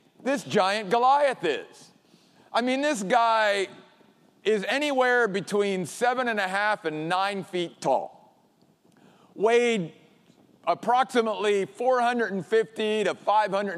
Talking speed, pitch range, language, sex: 120 wpm, 180-240 Hz, English, male